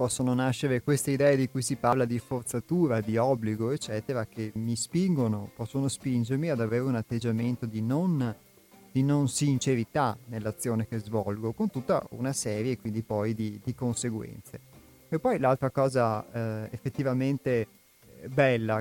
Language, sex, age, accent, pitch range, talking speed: Italian, male, 30-49, native, 115-130 Hz, 145 wpm